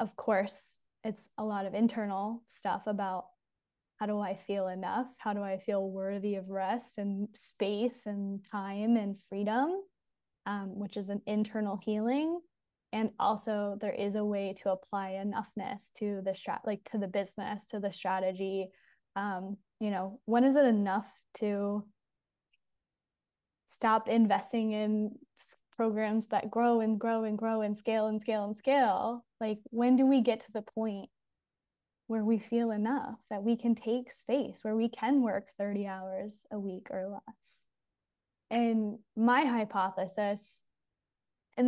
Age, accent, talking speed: 10-29, American, 155 wpm